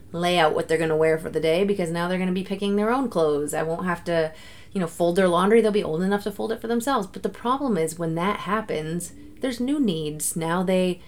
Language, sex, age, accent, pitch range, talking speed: English, female, 30-49, American, 160-210 Hz, 270 wpm